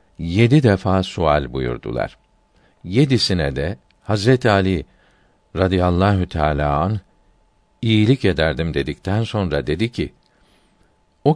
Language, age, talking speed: Turkish, 50-69, 95 wpm